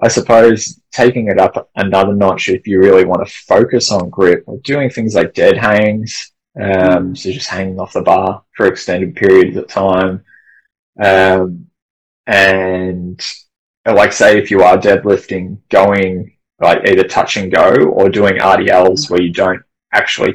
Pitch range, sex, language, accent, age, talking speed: 90-95 Hz, male, English, Australian, 20-39, 160 wpm